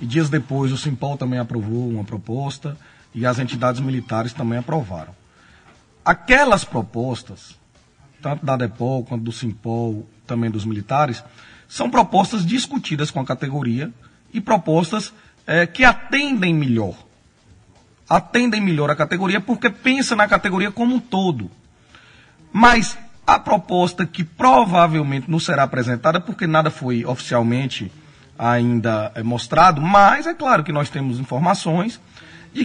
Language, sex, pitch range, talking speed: Portuguese, male, 120-200 Hz, 130 wpm